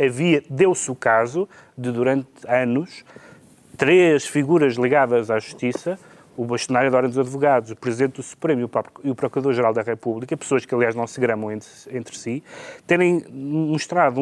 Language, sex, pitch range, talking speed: Portuguese, male, 130-170 Hz, 160 wpm